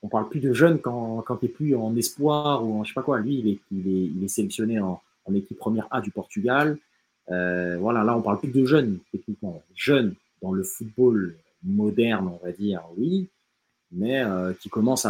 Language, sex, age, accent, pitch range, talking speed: French, male, 30-49, French, 95-135 Hz, 215 wpm